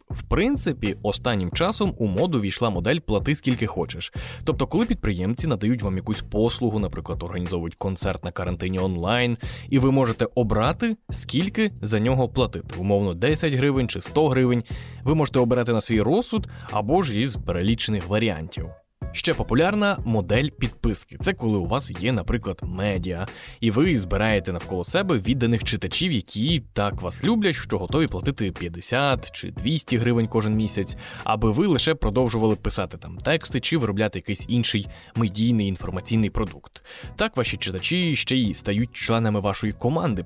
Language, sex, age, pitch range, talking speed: Ukrainian, male, 20-39, 100-125 Hz, 155 wpm